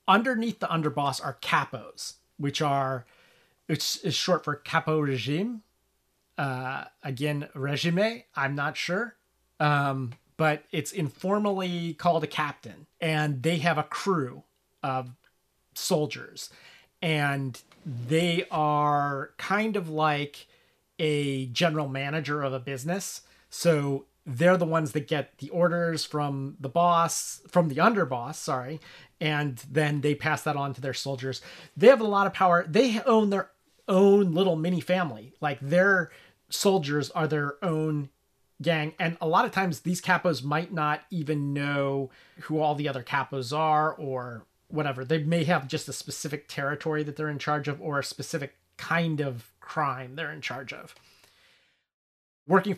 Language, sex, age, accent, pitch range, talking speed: English, male, 30-49, American, 140-170 Hz, 150 wpm